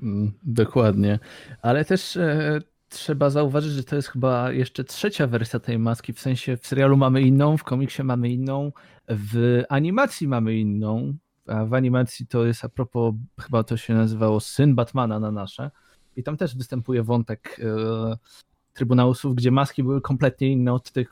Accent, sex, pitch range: native, male, 110-135 Hz